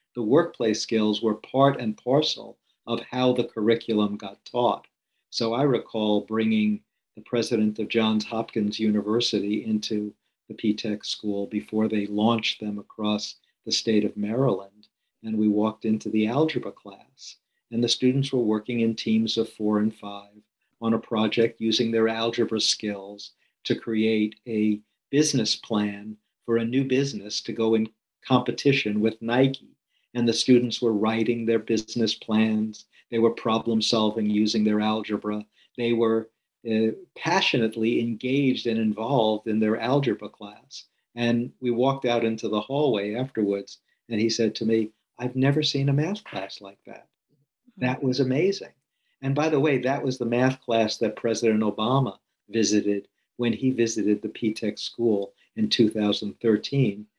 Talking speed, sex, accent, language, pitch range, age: 155 wpm, male, American, English, 105-120 Hz, 50-69